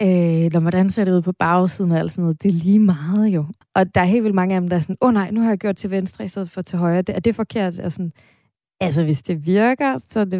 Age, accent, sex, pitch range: 20-39, native, female, 165-195 Hz